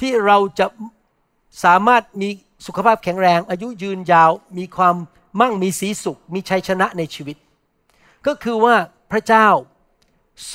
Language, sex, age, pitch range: Thai, male, 60-79, 170-225 Hz